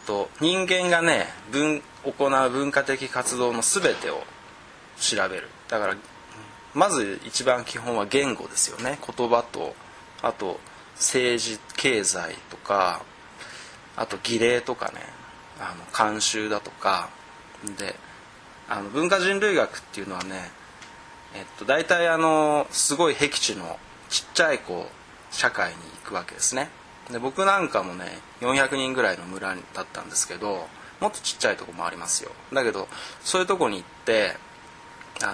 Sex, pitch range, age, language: male, 110-155 Hz, 20-39, Japanese